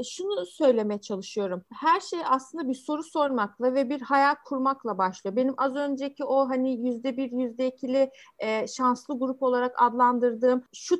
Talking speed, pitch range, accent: 155 wpm, 235-305 Hz, native